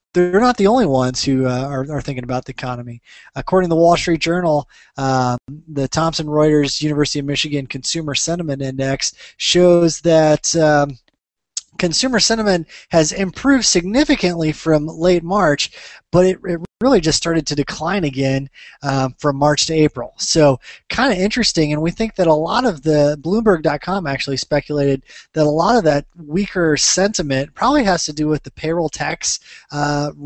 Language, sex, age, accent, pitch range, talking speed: English, male, 20-39, American, 135-170 Hz, 170 wpm